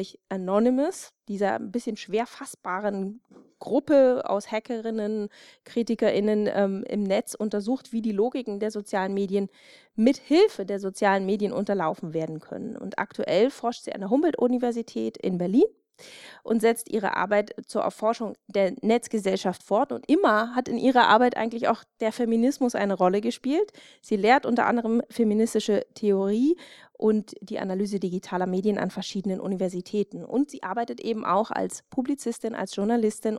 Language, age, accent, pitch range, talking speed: German, 30-49, German, 200-240 Hz, 145 wpm